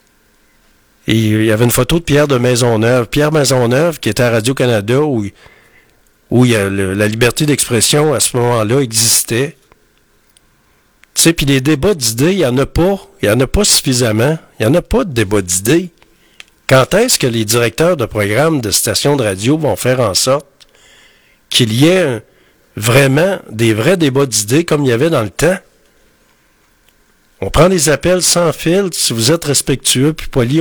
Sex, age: male, 60-79